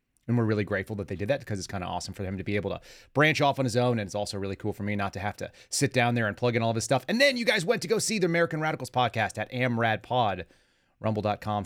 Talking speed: 310 wpm